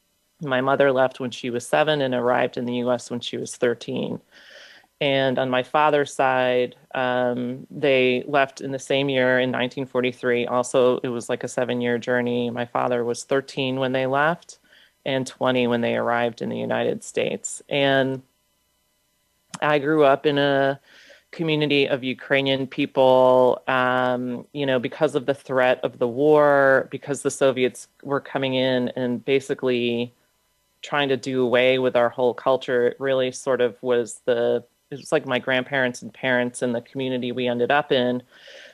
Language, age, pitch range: English, 30-49, 125-140 Hz